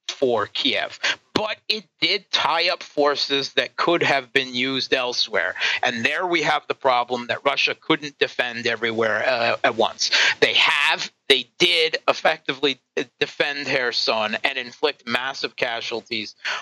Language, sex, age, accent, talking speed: English, male, 40-59, American, 140 wpm